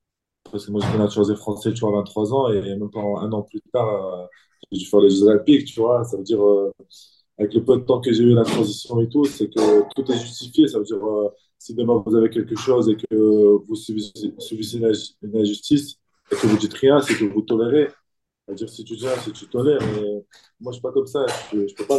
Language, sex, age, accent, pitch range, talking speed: French, male, 20-39, French, 105-130 Hz, 260 wpm